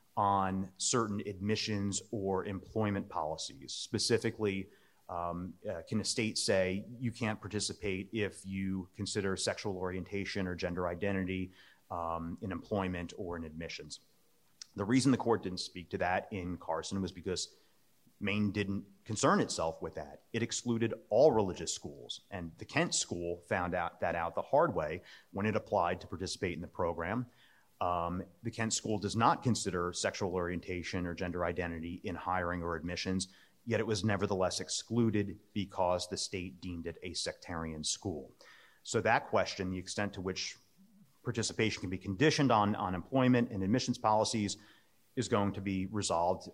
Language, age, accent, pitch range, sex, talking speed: English, 30-49, American, 90-105 Hz, male, 160 wpm